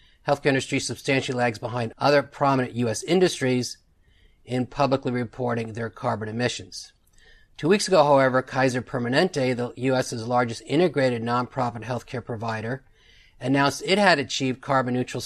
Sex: male